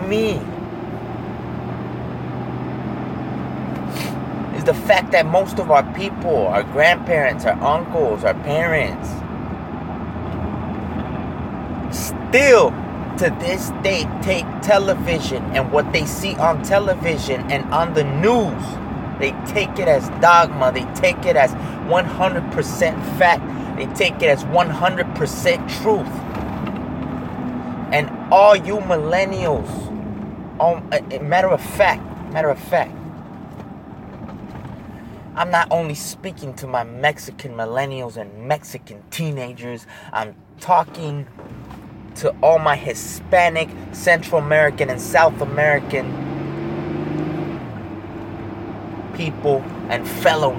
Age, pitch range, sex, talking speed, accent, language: 30-49, 115-170 Hz, male, 95 wpm, American, English